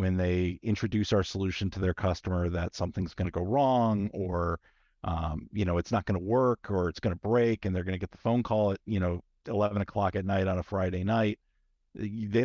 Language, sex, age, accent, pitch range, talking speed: English, male, 50-69, American, 90-110 Hz, 230 wpm